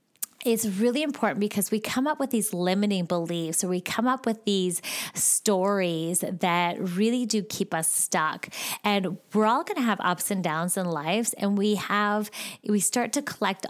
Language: English